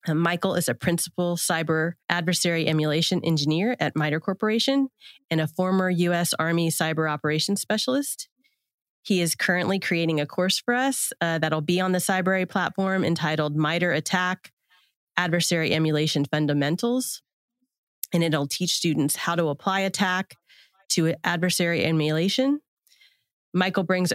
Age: 30-49